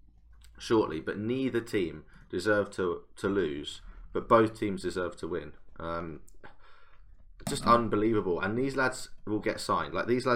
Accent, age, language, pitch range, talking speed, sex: British, 20-39, English, 90-110 Hz, 150 wpm, male